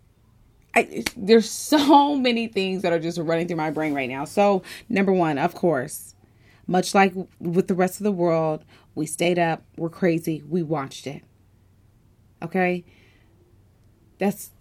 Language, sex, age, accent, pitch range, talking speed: English, female, 30-49, American, 150-220 Hz, 150 wpm